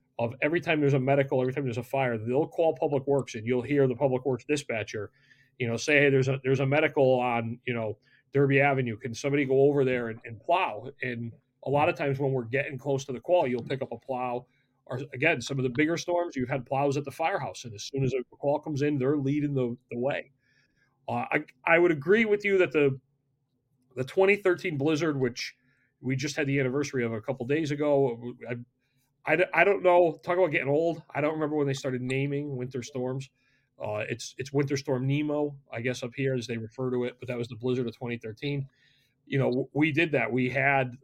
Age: 40-59